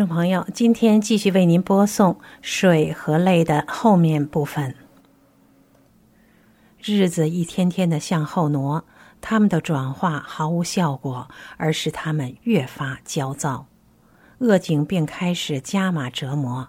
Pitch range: 145-195 Hz